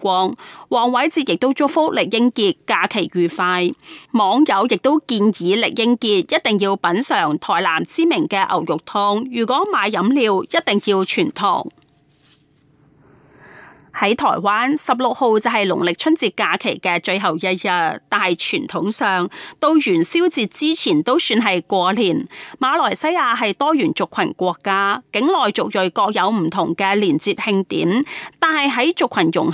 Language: Chinese